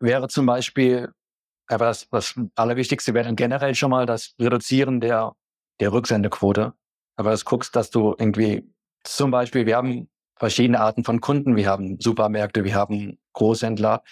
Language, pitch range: German, 110-130 Hz